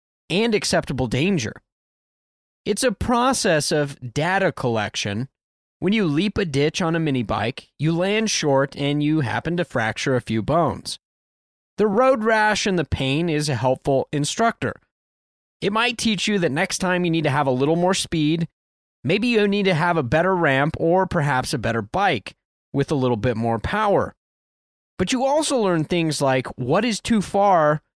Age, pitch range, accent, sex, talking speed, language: 20-39, 130-190 Hz, American, male, 180 wpm, English